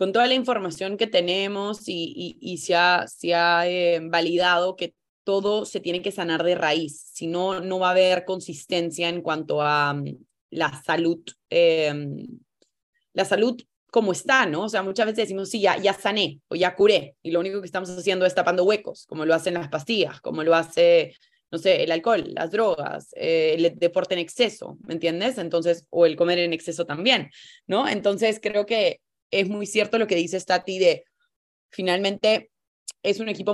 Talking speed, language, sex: 190 wpm, Spanish, female